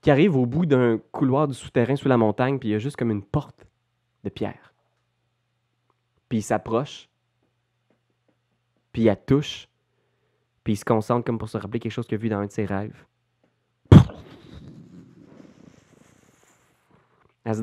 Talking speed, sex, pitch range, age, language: 160 wpm, male, 110-155 Hz, 20-39, French